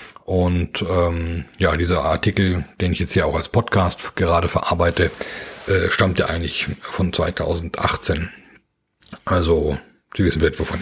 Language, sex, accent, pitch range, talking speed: German, male, German, 85-100 Hz, 135 wpm